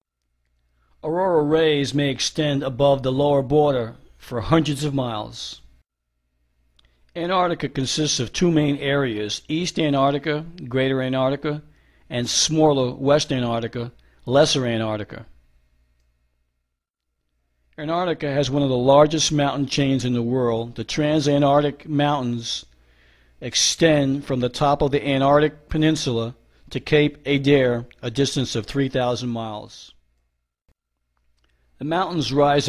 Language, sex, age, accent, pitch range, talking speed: English, male, 50-69, American, 110-145 Hz, 110 wpm